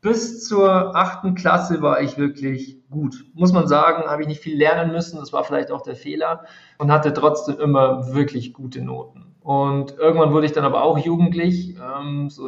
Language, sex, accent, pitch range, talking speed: German, male, German, 135-165 Hz, 190 wpm